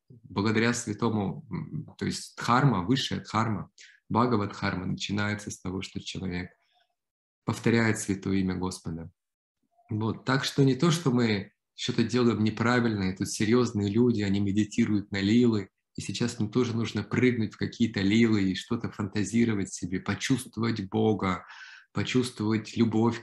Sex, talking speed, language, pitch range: male, 135 wpm, Russian, 100-125 Hz